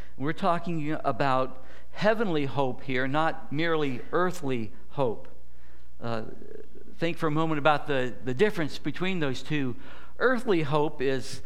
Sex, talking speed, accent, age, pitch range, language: male, 130 wpm, American, 60-79, 125-175 Hz, English